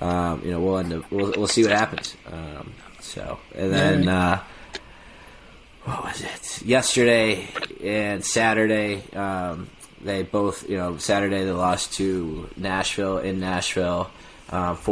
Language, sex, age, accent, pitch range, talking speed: English, male, 20-39, American, 85-100 Hz, 140 wpm